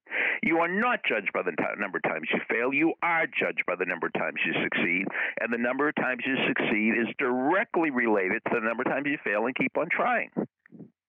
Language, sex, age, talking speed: English, male, 60-79, 225 wpm